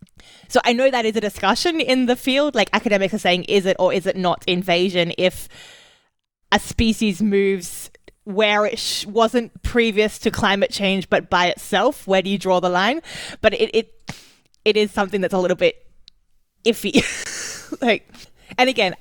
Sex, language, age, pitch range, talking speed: female, English, 20-39, 180-215 Hz, 175 wpm